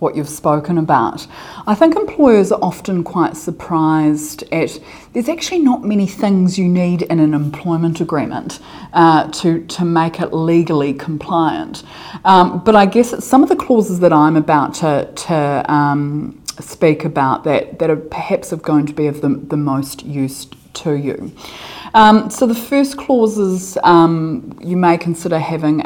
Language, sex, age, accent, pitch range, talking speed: English, female, 30-49, Australian, 150-185 Hz, 165 wpm